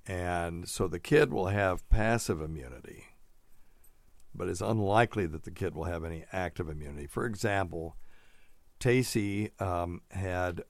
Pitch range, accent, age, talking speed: 85-105 Hz, American, 60-79, 135 wpm